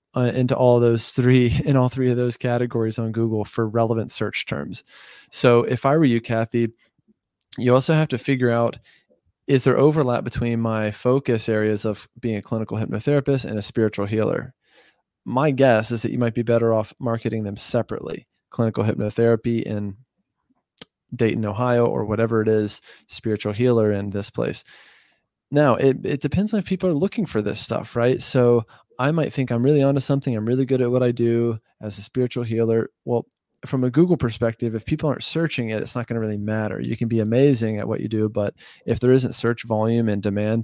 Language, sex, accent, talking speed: English, male, American, 200 wpm